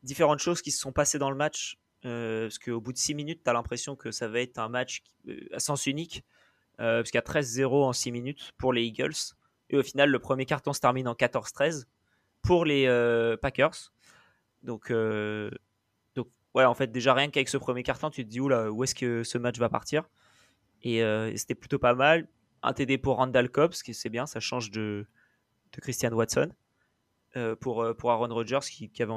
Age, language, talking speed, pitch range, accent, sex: 20-39, French, 220 wpm, 115-135 Hz, French, male